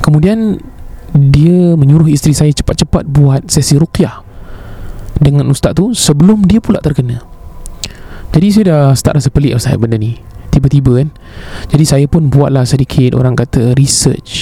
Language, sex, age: Malay, male, 20-39